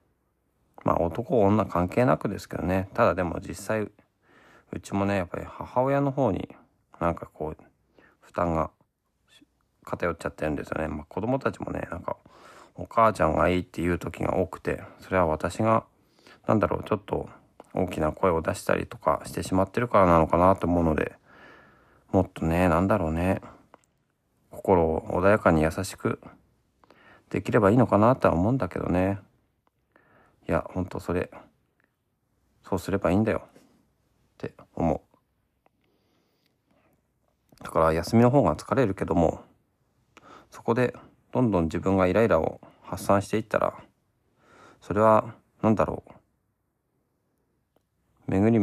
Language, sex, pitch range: Japanese, male, 85-110 Hz